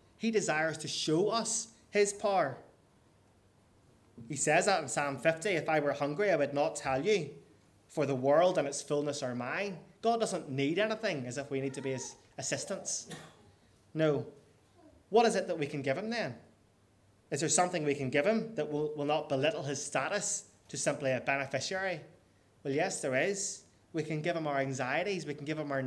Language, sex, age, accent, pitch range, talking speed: English, male, 20-39, British, 135-180 Hz, 195 wpm